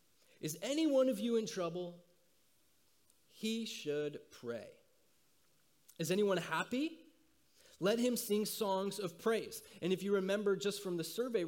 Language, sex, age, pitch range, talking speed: English, male, 30-49, 160-235 Hz, 140 wpm